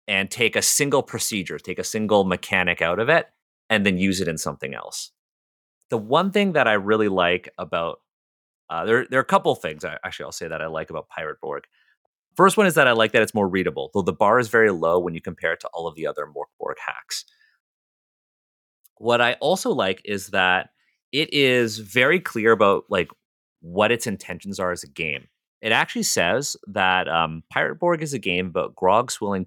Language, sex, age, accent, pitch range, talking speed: English, male, 30-49, American, 95-120 Hz, 210 wpm